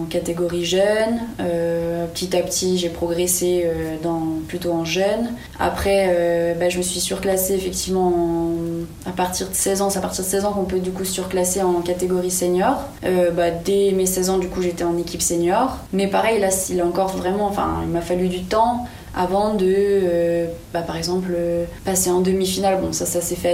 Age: 20-39